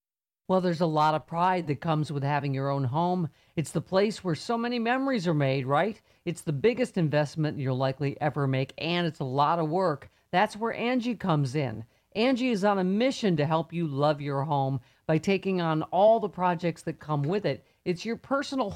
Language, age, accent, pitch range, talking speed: English, 50-69, American, 150-215 Hz, 210 wpm